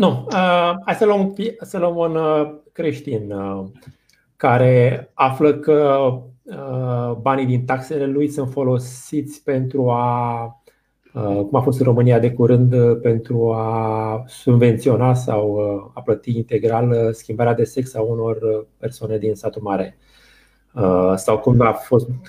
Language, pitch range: Romanian, 110-135 Hz